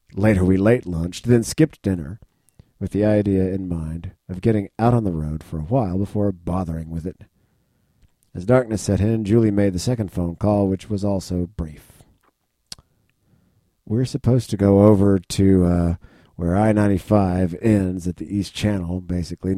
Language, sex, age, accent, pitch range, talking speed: English, male, 50-69, American, 85-105 Hz, 160 wpm